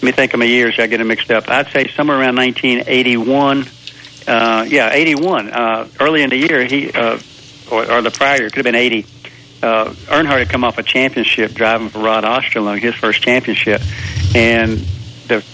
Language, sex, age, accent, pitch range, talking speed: English, male, 60-79, American, 110-130 Hz, 195 wpm